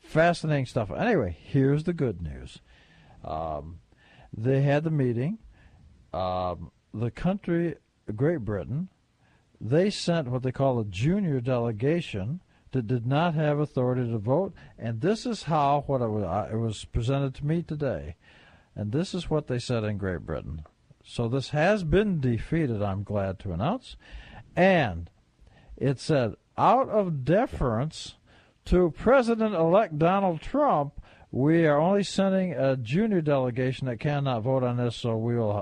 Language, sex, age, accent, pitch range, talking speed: English, male, 60-79, American, 110-155 Hz, 150 wpm